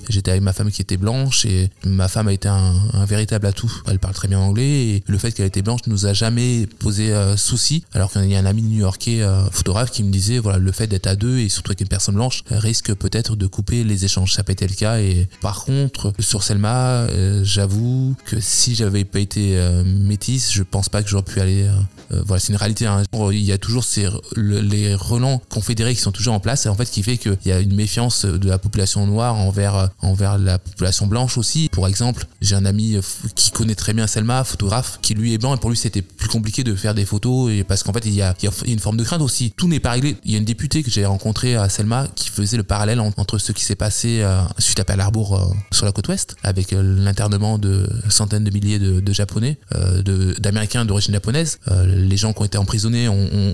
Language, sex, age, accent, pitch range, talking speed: French, male, 20-39, French, 100-115 Hz, 255 wpm